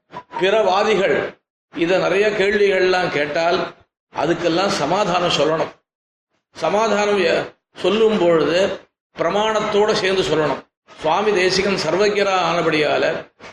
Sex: male